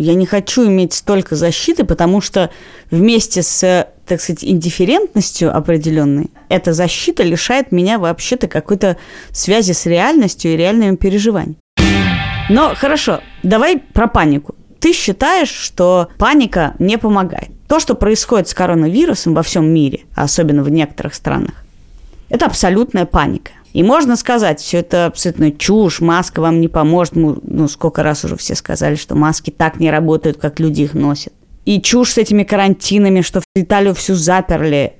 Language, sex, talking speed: Russian, female, 155 wpm